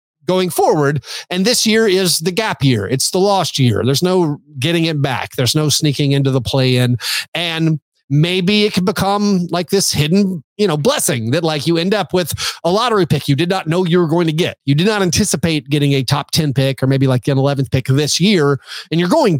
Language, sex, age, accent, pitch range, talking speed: English, male, 30-49, American, 140-180 Hz, 230 wpm